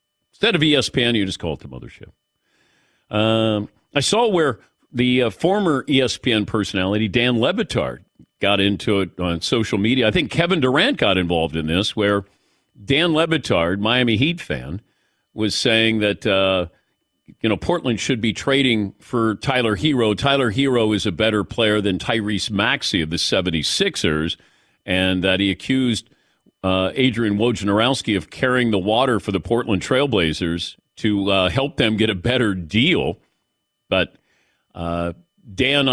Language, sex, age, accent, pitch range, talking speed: English, male, 50-69, American, 95-120 Hz, 150 wpm